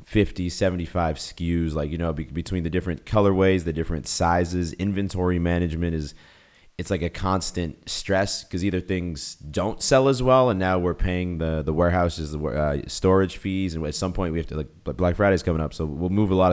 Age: 20-39